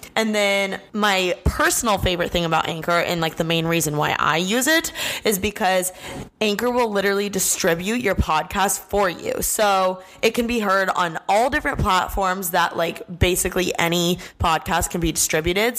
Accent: American